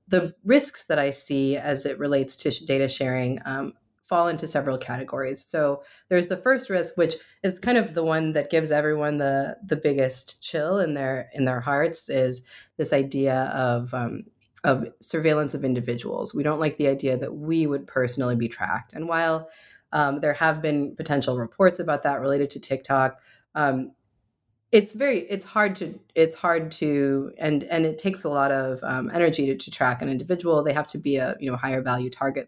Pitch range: 135-160 Hz